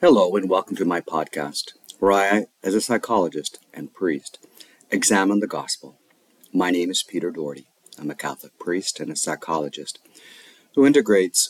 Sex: male